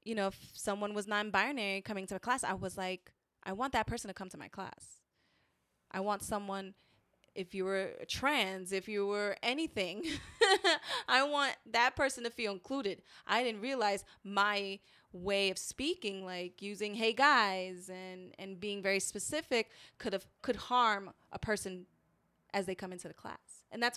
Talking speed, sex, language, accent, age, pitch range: 175 wpm, female, English, American, 20-39, 190-240 Hz